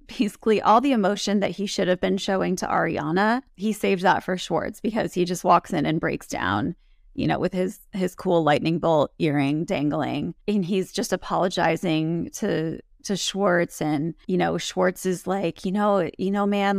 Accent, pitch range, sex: American, 170-200 Hz, female